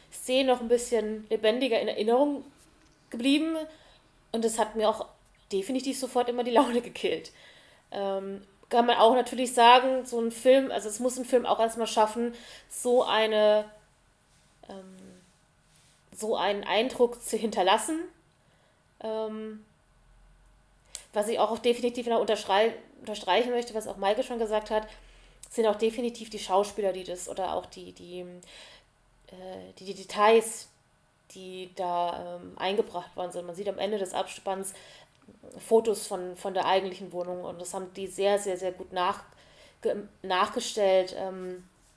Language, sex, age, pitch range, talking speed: German, female, 20-39, 190-235 Hz, 145 wpm